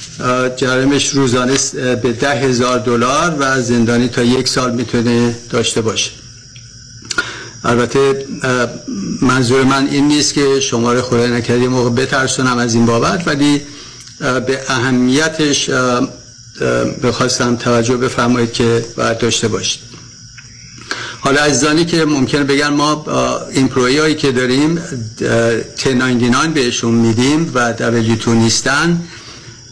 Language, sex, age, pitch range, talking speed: Persian, male, 50-69, 120-135 Hz, 115 wpm